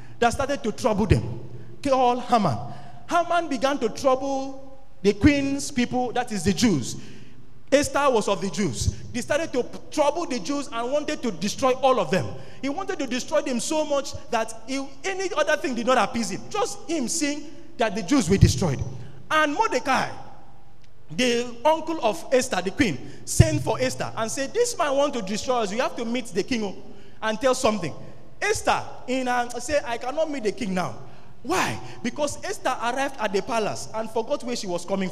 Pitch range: 225-295 Hz